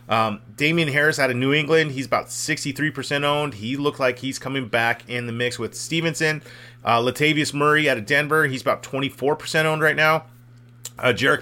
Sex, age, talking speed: male, 30-49, 190 wpm